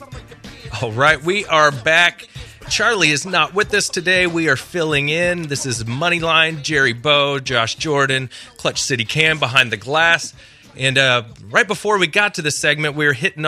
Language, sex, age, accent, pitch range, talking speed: English, male, 30-49, American, 120-155 Hz, 180 wpm